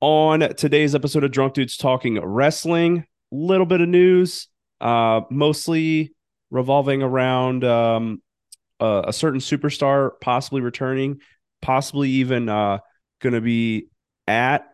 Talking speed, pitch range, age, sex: 120 wpm, 105-135 Hz, 30-49, male